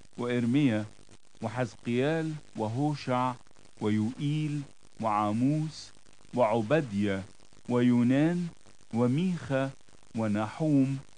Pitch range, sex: 105-145 Hz, male